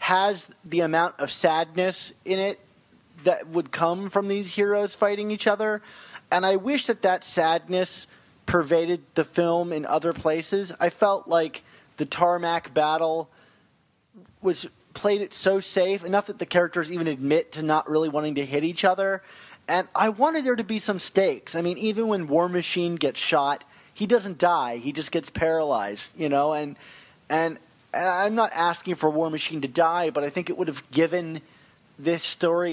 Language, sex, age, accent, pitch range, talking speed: English, male, 30-49, American, 160-205 Hz, 180 wpm